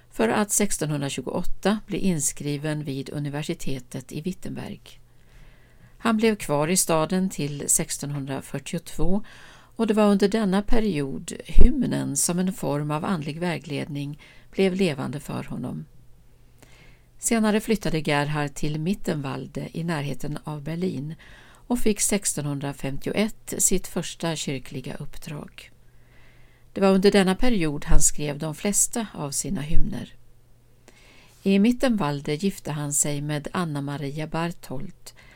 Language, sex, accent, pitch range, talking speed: Swedish, female, native, 140-190 Hz, 115 wpm